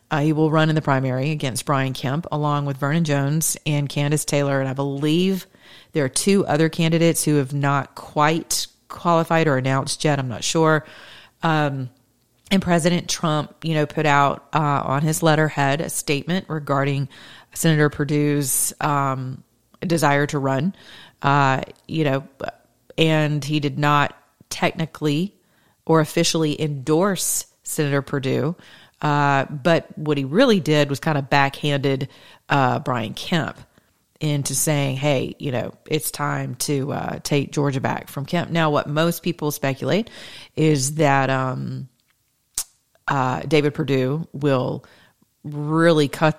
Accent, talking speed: American, 145 wpm